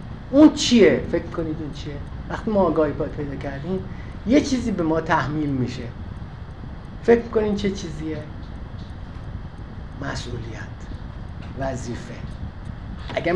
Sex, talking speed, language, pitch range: male, 110 wpm, Persian, 160-215 Hz